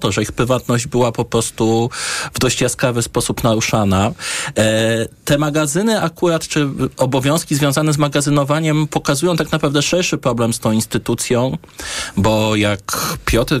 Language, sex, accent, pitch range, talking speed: Polish, male, native, 100-125 Hz, 140 wpm